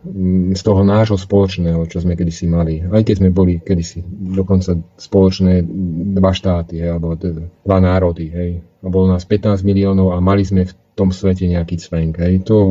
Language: Czech